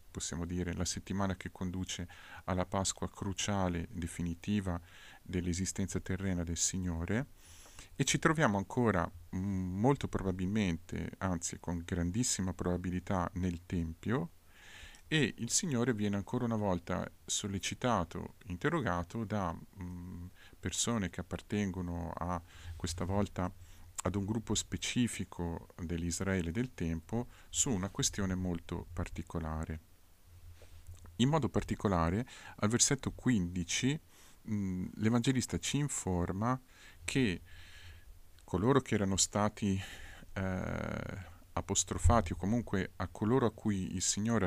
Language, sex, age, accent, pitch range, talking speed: Italian, male, 40-59, native, 85-105 Hz, 105 wpm